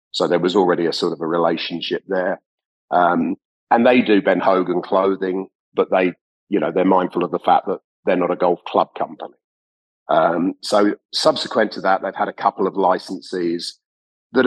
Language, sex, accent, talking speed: English, male, British, 185 wpm